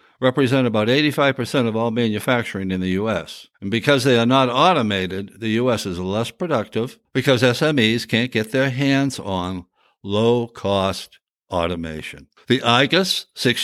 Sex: male